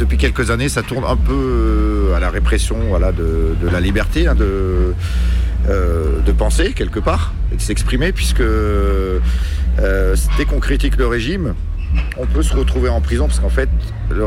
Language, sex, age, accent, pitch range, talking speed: English, male, 40-59, French, 70-100 Hz, 175 wpm